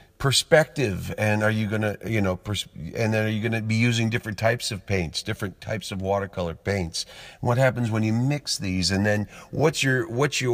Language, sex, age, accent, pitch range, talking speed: English, male, 40-59, American, 90-115 Hz, 205 wpm